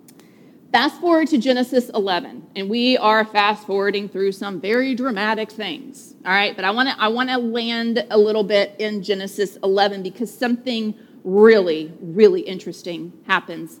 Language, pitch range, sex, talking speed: English, 200-260 Hz, female, 160 wpm